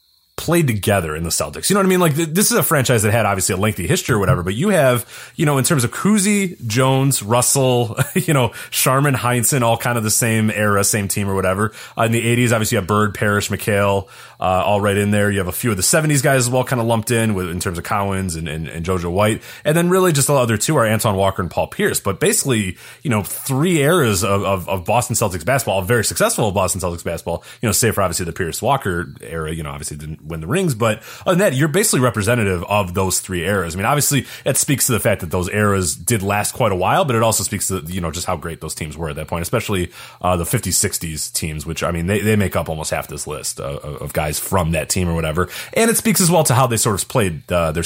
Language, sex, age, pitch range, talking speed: English, male, 30-49, 90-125 Hz, 270 wpm